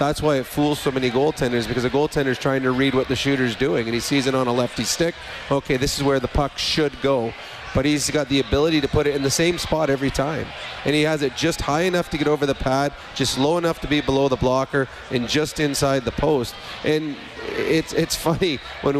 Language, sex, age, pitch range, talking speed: English, male, 30-49, 135-155 Hz, 245 wpm